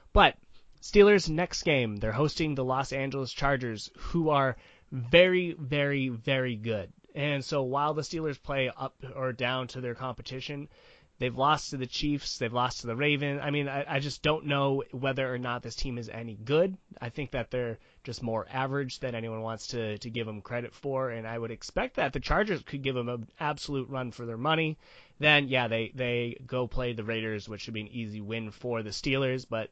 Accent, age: American, 20-39